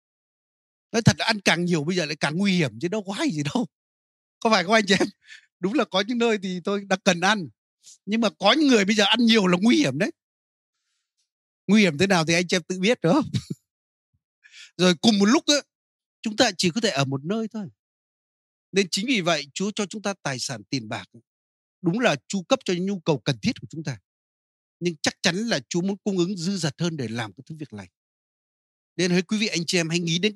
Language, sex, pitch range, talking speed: Vietnamese, male, 130-195 Hz, 245 wpm